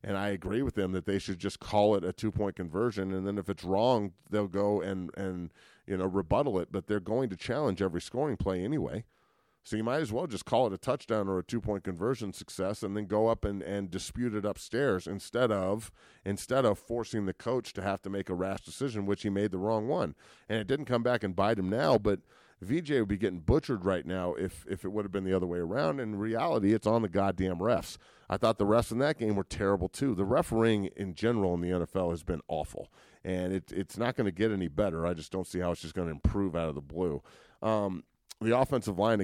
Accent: American